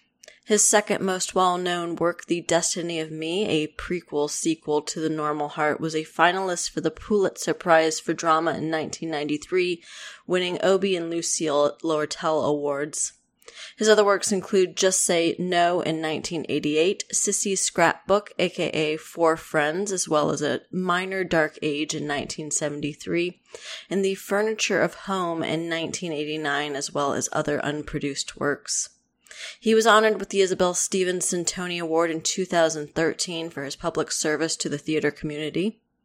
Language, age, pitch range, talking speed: English, 20-39, 155-190 Hz, 145 wpm